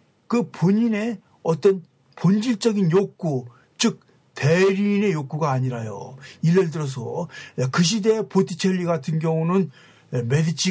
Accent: native